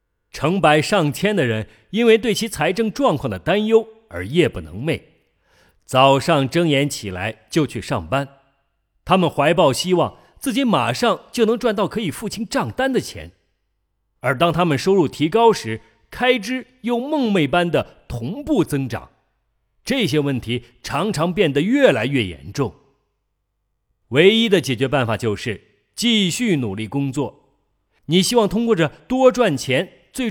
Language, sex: Chinese, male